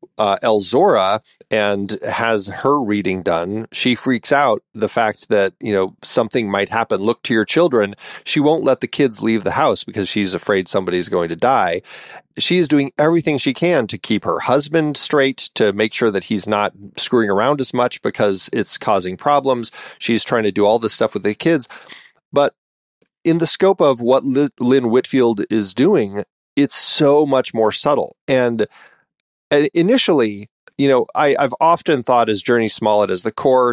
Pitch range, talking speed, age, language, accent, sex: 105-135 Hz, 185 wpm, 30-49, English, American, male